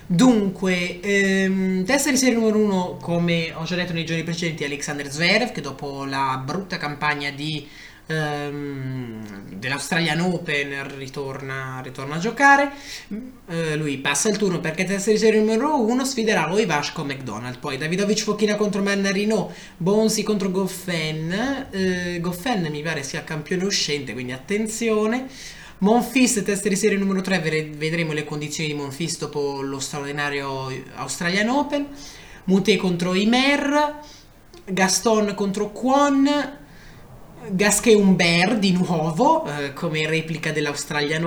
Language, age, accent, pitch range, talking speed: Italian, 20-39, native, 150-220 Hz, 130 wpm